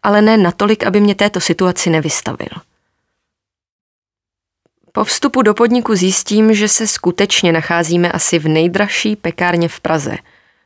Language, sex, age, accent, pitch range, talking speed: Czech, female, 20-39, native, 165-210 Hz, 130 wpm